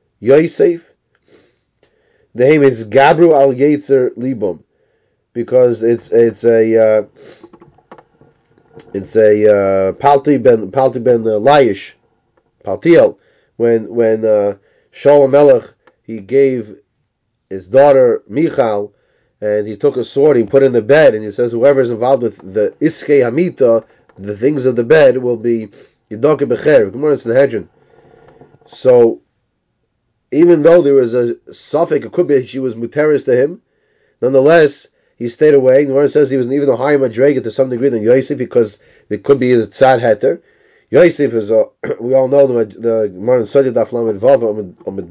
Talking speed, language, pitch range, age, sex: 150 wpm, English, 115-145 Hz, 30-49, male